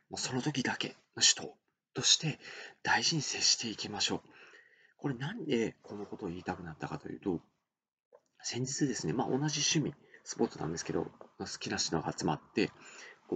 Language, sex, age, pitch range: Japanese, male, 40-59, 95-135 Hz